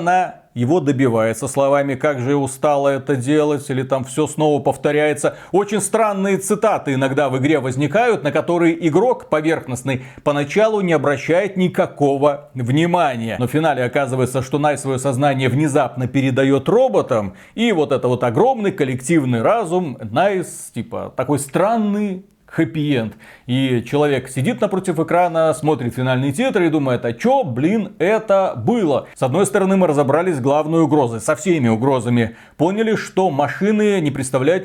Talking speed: 145 wpm